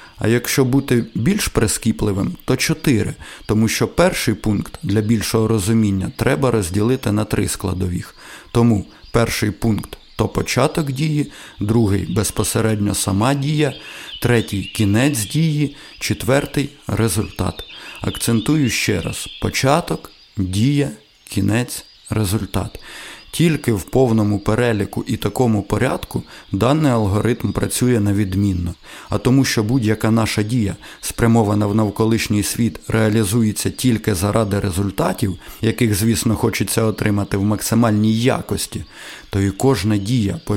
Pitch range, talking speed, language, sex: 100-120 Hz, 125 wpm, Ukrainian, male